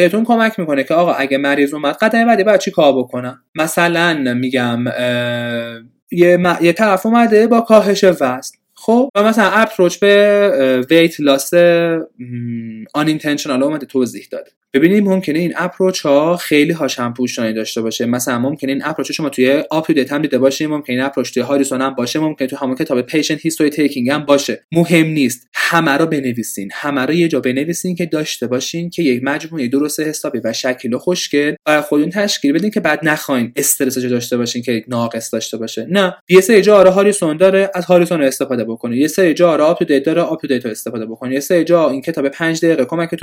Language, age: Persian, 20-39